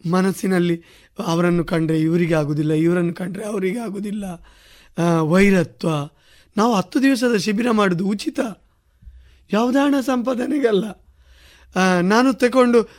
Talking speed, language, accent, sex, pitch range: 90 wpm, Kannada, native, male, 170-240 Hz